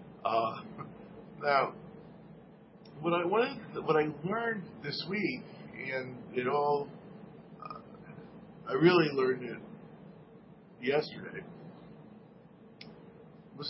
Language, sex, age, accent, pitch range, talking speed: English, male, 50-69, American, 120-195 Hz, 85 wpm